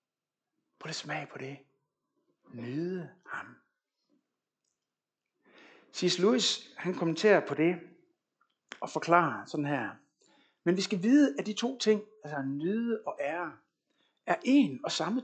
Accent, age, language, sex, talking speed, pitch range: native, 60-79, Danish, male, 130 wpm, 155-225 Hz